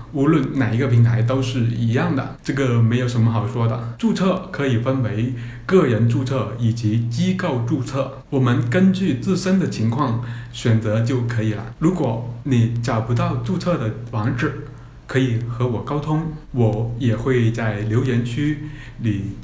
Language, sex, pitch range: Chinese, male, 120-140 Hz